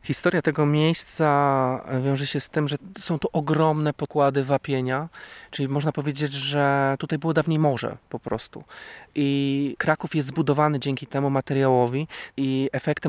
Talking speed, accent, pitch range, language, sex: 145 wpm, native, 135-155 Hz, Polish, male